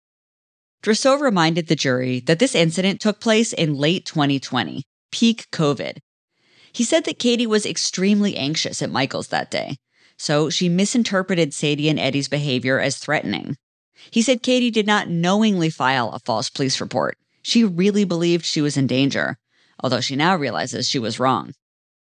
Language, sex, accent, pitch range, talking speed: English, female, American, 145-210 Hz, 160 wpm